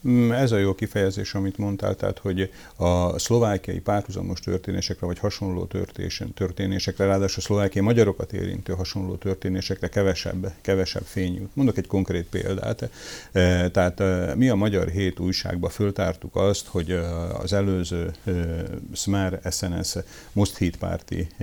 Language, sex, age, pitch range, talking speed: Hungarian, male, 50-69, 90-100 Hz, 130 wpm